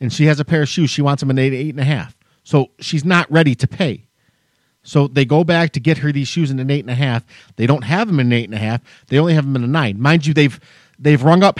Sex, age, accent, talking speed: male, 40-59, American, 310 wpm